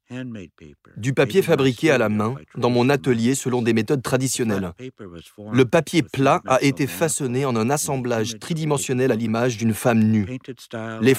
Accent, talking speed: French, 155 wpm